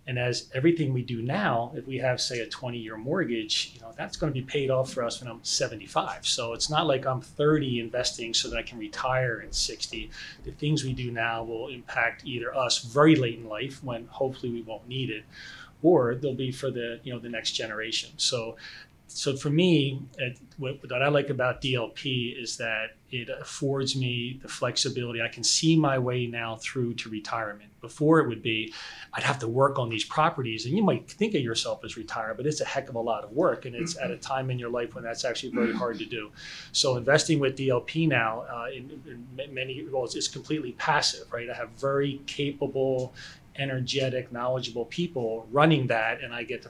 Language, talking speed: English, 210 wpm